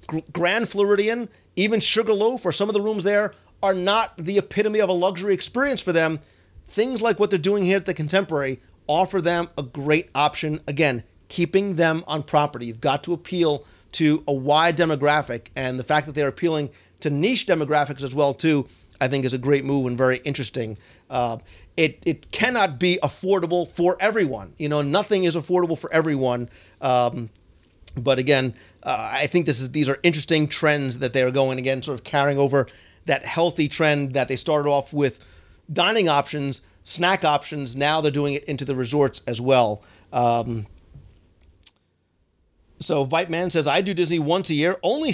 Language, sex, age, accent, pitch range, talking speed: English, male, 40-59, American, 135-180 Hz, 180 wpm